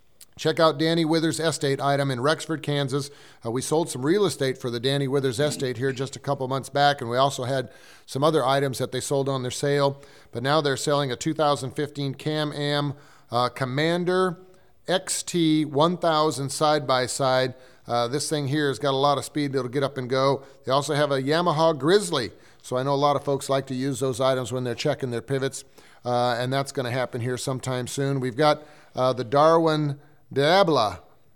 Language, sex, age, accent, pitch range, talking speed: English, male, 40-59, American, 130-155 Hz, 195 wpm